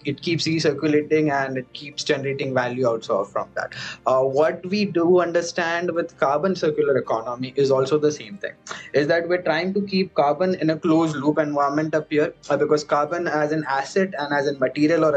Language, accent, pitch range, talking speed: English, Indian, 150-185 Hz, 200 wpm